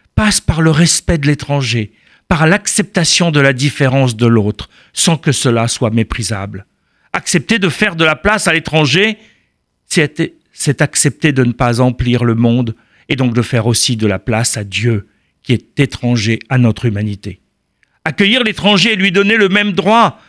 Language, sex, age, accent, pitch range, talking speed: French, male, 50-69, French, 115-160 Hz, 170 wpm